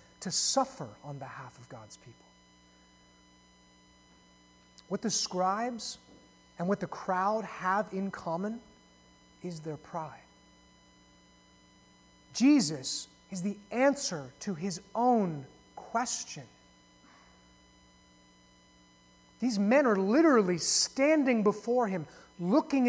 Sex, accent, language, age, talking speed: male, American, English, 30-49, 95 wpm